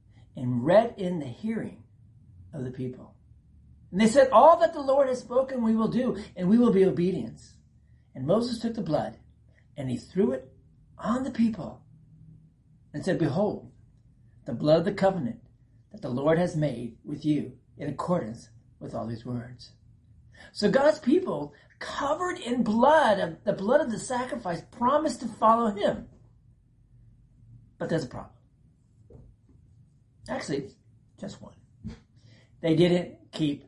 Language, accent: English, American